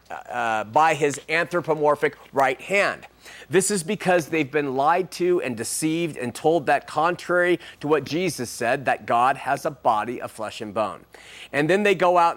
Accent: American